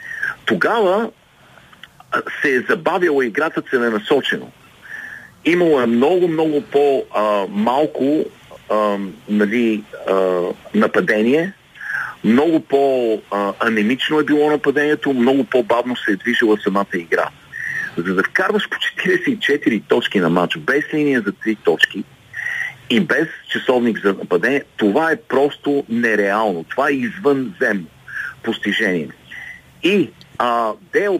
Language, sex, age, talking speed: Bulgarian, male, 50-69, 105 wpm